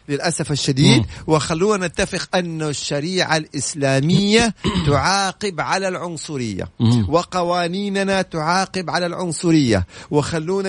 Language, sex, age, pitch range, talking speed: Arabic, male, 50-69, 140-185 Hz, 85 wpm